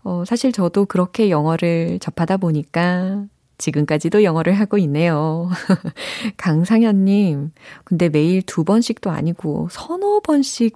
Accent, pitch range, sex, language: native, 160-230 Hz, female, Korean